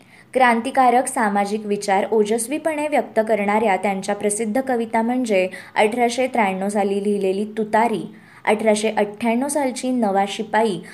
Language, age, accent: Marathi, 20-39, native